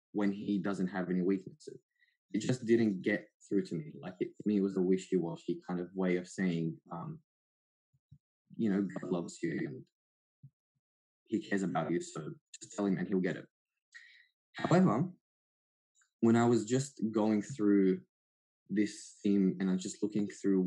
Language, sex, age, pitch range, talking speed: English, male, 20-39, 95-115 Hz, 170 wpm